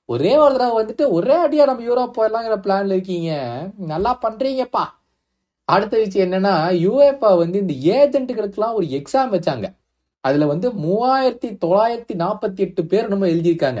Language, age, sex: Tamil, 20-39, male